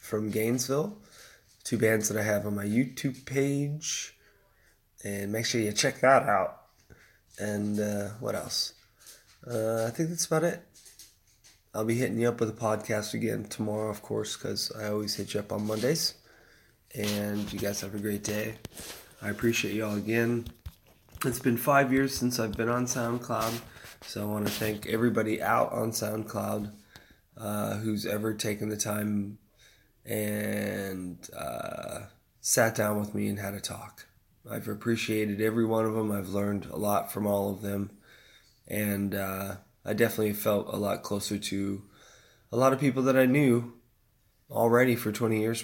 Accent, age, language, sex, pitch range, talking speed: American, 20-39, English, male, 105-115 Hz, 170 wpm